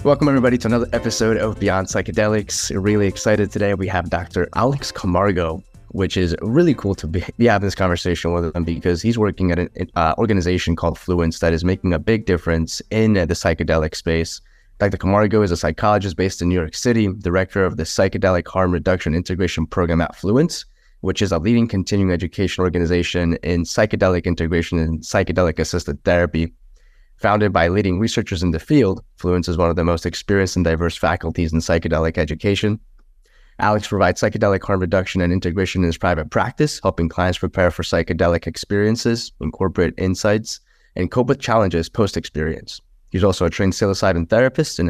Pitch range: 85-105 Hz